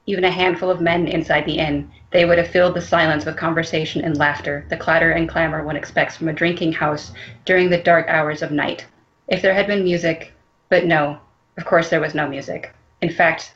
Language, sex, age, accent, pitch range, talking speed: English, female, 30-49, American, 150-175 Hz, 215 wpm